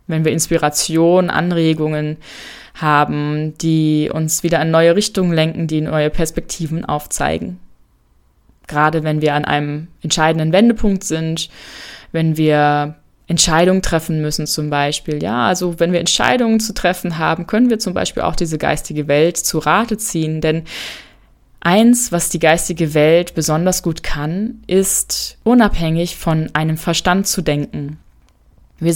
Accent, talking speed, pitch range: German, 140 wpm, 155-190 Hz